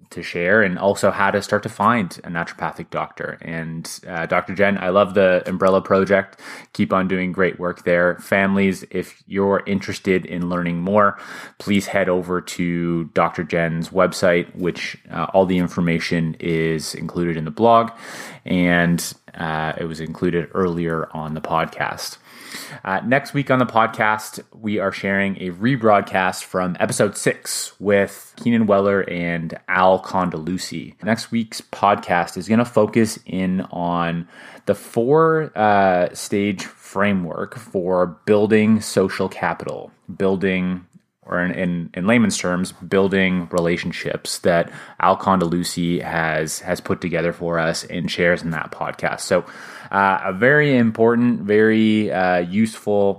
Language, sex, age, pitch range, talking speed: English, male, 20-39, 85-100 Hz, 140 wpm